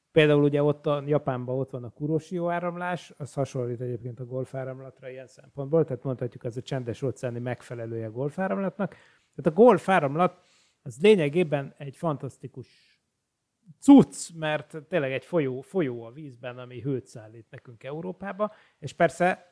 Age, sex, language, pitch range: 30-49, male, Hungarian, 125-155 Hz